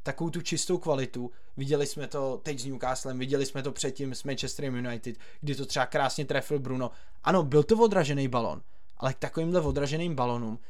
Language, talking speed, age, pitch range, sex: Czech, 185 wpm, 20-39, 135-170 Hz, male